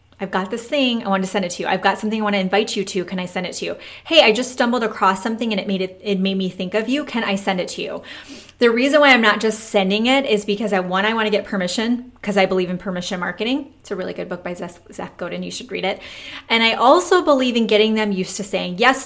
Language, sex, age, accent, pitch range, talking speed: English, female, 20-39, American, 190-235 Hz, 295 wpm